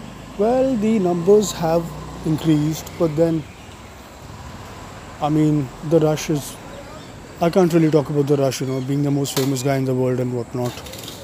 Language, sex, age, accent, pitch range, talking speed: English, male, 30-49, Indian, 130-155 Hz, 165 wpm